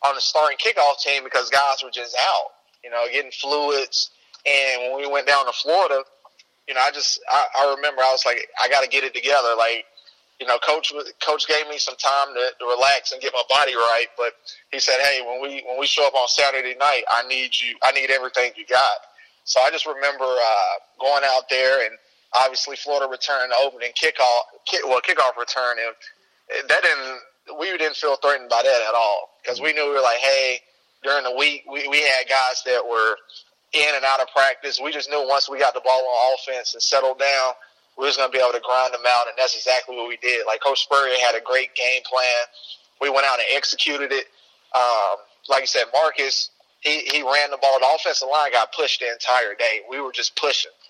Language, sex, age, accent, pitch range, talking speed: English, male, 30-49, American, 125-140 Hz, 225 wpm